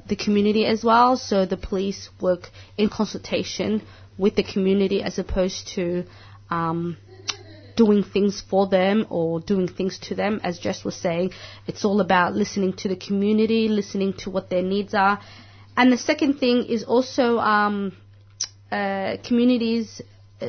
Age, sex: 20-39, female